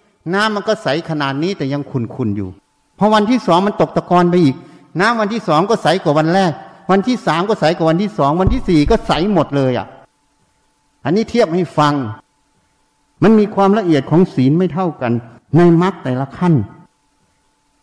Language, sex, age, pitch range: Thai, male, 60-79, 145-200 Hz